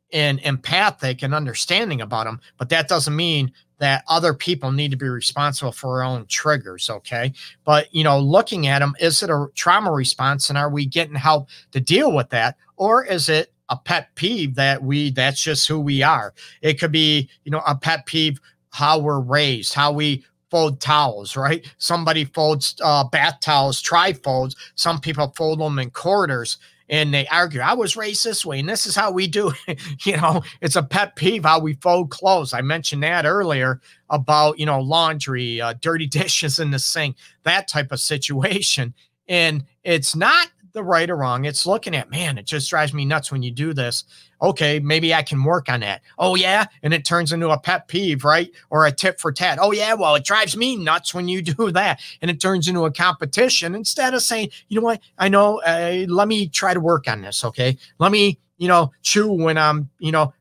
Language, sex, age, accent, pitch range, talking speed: English, male, 40-59, American, 140-170 Hz, 210 wpm